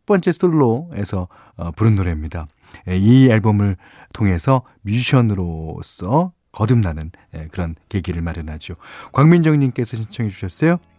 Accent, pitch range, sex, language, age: native, 95-145 Hz, male, Korean, 40-59